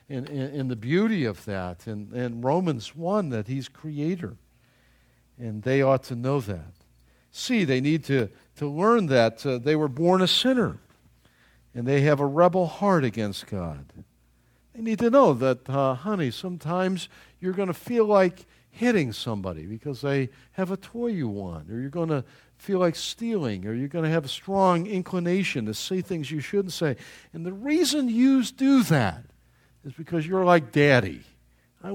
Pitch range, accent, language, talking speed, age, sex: 115-195 Hz, American, English, 180 wpm, 50-69, male